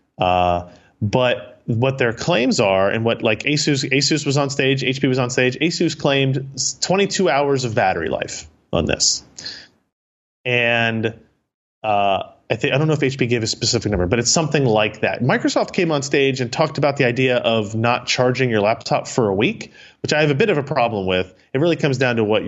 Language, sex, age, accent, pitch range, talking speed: English, male, 30-49, American, 105-140 Hz, 205 wpm